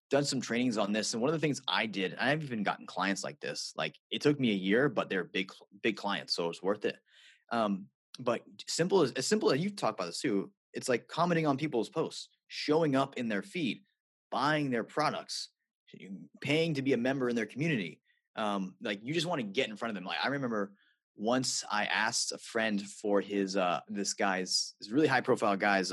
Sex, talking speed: male, 225 wpm